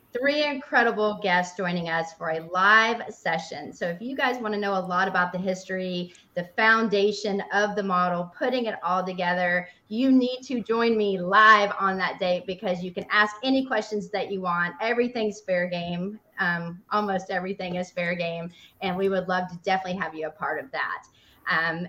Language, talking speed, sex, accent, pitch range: English, 190 wpm, female, American, 180-220 Hz